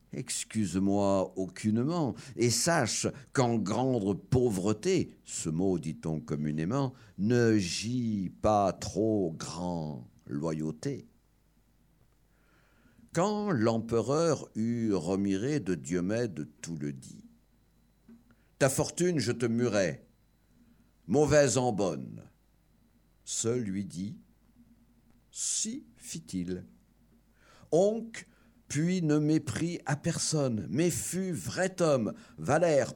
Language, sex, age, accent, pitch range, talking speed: French, male, 60-79, French, 100-150 Hz, 95 wpm